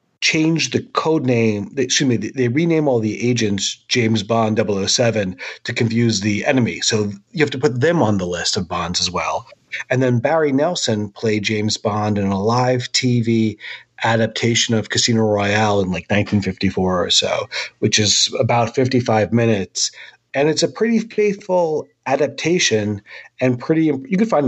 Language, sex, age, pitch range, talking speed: English, male, 40-59, 110-145 Hz, 165 wpm